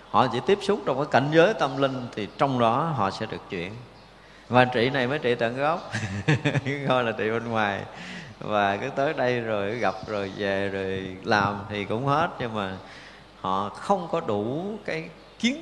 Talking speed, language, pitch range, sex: 190 wpm, Vietnamese, 100-130 Hz, male